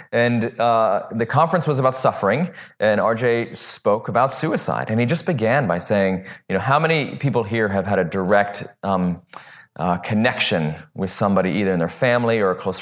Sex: male